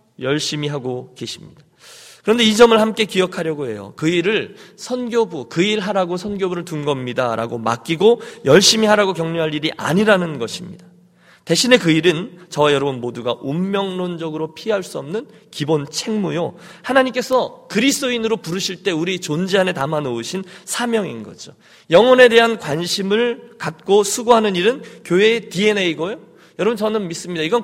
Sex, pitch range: male, 160-225 Hz